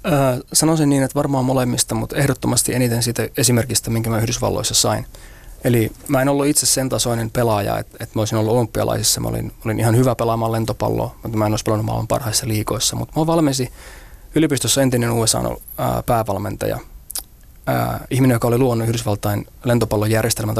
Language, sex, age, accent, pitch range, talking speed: Finnish, male, 20-39, native, 110-125 Hz, 165 wpm